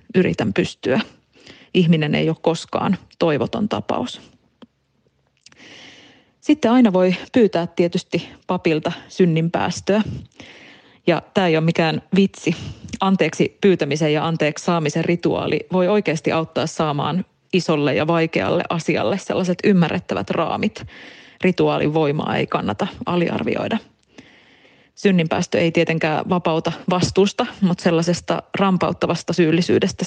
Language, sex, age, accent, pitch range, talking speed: Finnish, female, 30-49, native, 160-190 Hz, 105 wpm